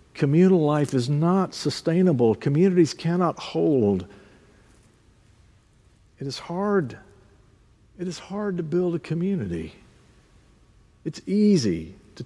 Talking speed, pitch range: 105 wpm, 110-160 Hz